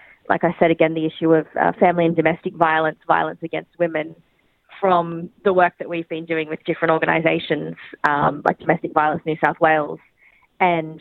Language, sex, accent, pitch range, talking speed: English, female, Australian, 160-175 Hz, 180 wpm